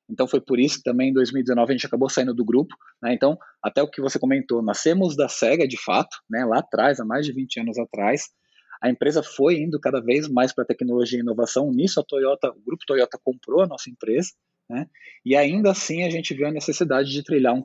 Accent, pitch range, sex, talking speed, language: Brazilian, 120-155 Hz, male, 230 wpm, Portuguese